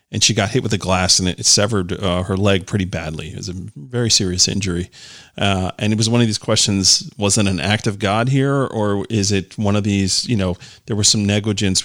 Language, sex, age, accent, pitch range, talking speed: English, male, 40-59, American, 95-120 Hz, 250 wpm